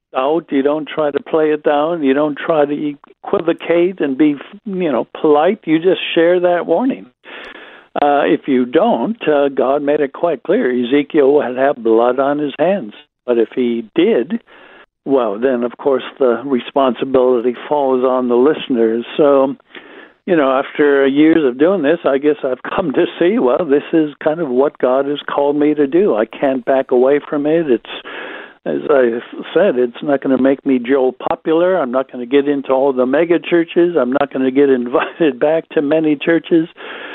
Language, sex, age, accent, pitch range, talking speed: English, male, 60-79, American, 135-165 Hz, 190 wpm